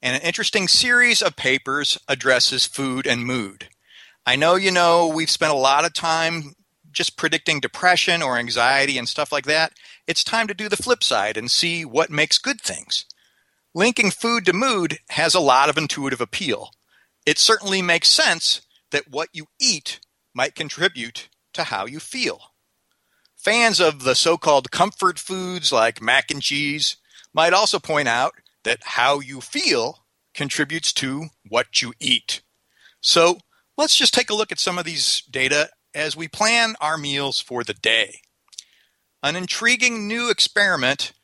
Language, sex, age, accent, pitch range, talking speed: English, male, 40-59, American, 140-215 Hz, 165 wpm